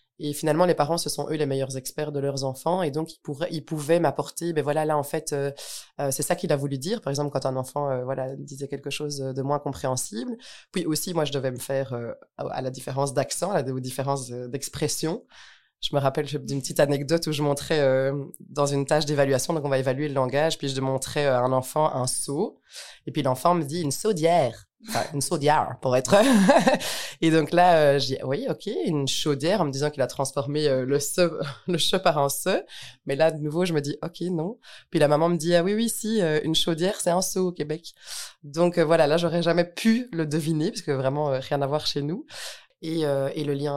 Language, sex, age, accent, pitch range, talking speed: French, female, 20-39, French, 135-165 Hz, 240 wpm